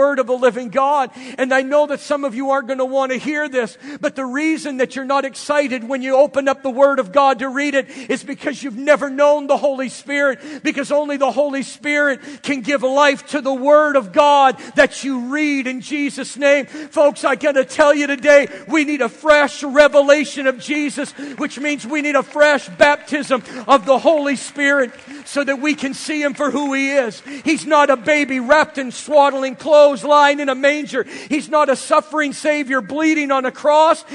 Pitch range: 270-305 Hz